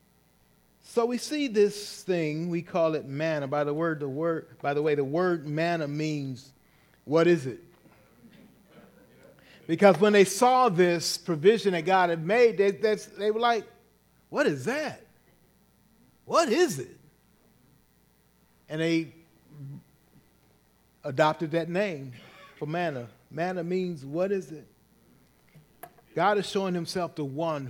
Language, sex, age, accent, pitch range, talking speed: English, male, 40-59, American, 145-205 Hz, 135 wpm